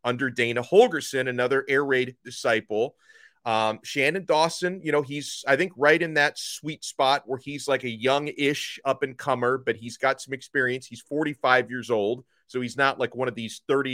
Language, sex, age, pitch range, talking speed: English, male, 30-49, 115-140 Hz, 200 wpm